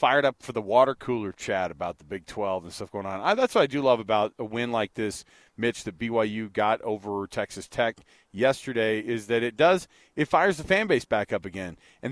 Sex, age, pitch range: male, 40-59, 115-155 Hz